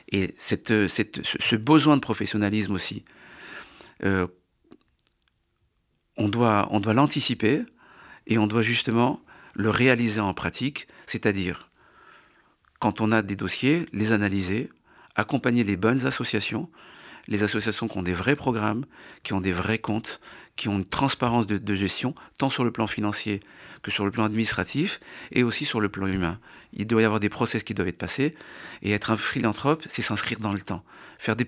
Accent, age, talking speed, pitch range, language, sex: French, 50-69, 165 wpm, 100-125 Hz, French, male